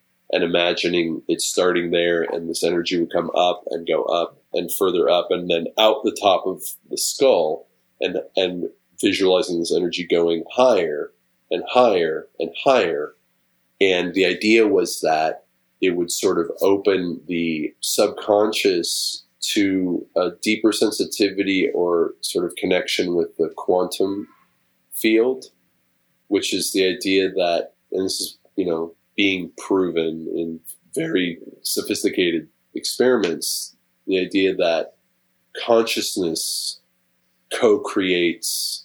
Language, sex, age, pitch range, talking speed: English, male, 30-49, 80-110 Hz, 125 wpm